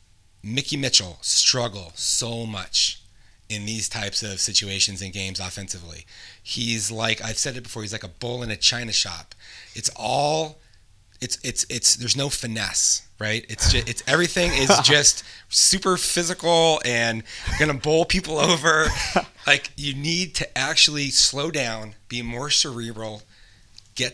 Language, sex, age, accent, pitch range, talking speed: English, male, 30-49, American, 105-135 Hz, 145 wpm